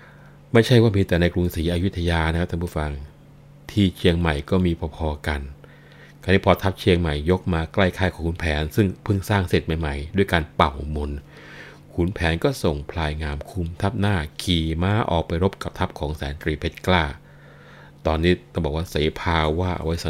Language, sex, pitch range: Thai, male, 75-90 Hz